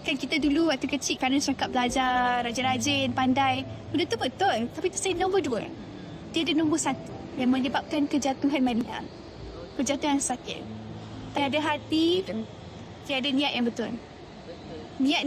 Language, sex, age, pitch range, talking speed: Malay, female, 20-39, 255-300 Hz, 135 wpm